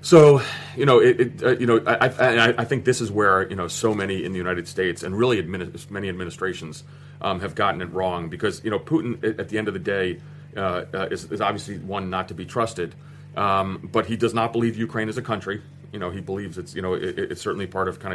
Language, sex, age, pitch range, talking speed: English, male, 30-49, 95-125 Hz, 250 wpm